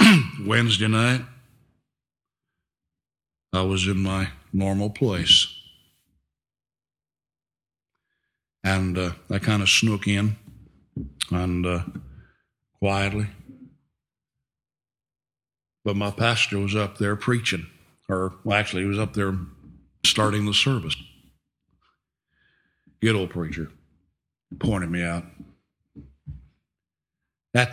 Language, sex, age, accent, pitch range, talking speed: English, male, 60-79, American, 85-105 Hz, 90 wpm